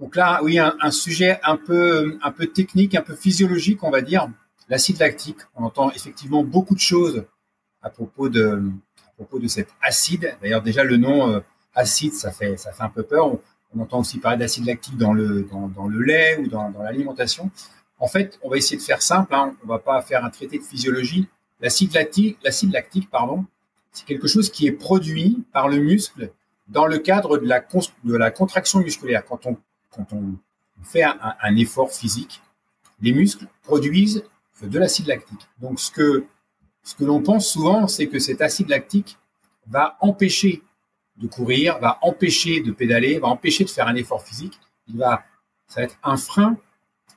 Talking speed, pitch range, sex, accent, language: 195 wpm, 120-190 Hz, male, French, French